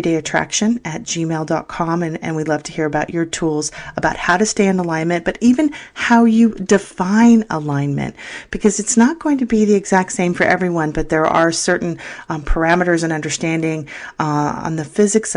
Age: 40-59